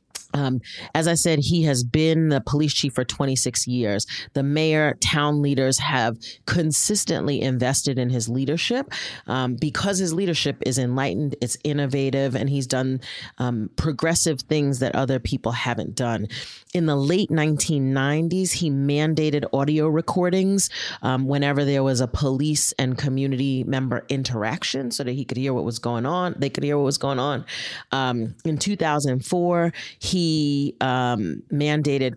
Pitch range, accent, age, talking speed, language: 130-155 Hz, American, 30-49, 155 wpm, English